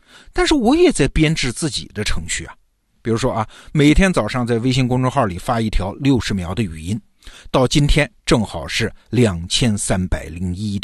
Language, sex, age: Chinese, male, 50-69